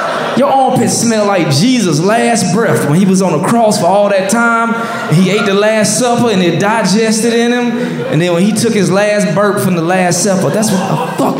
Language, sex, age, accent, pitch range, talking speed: English, male, 20-39, American, 145-230 Hz, 225 wpm